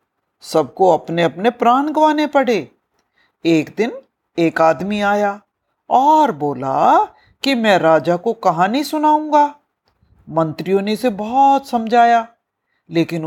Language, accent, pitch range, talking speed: Hindi, native, 175-275 Hz, 115 wpm